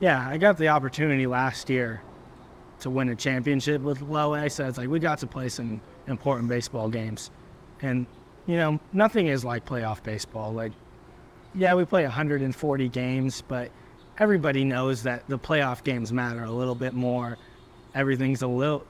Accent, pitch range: American, 120-145 Hz